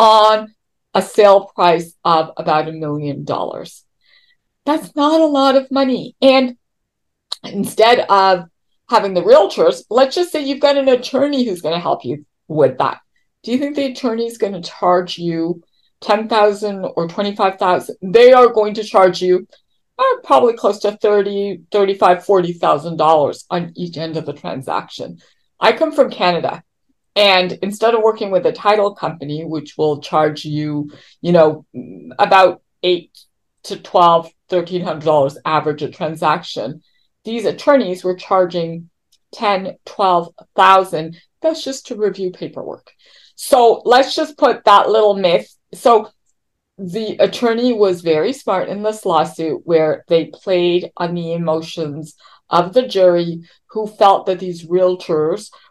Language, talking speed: English, 155 wpm